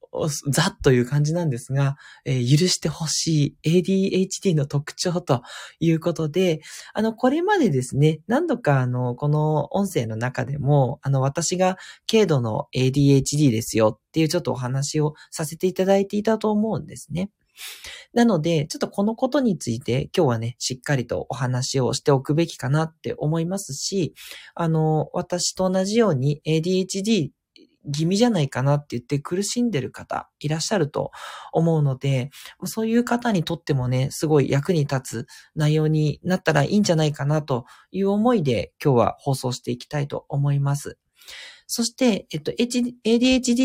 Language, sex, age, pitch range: Japanese, male, 20-39, 145-205 Hz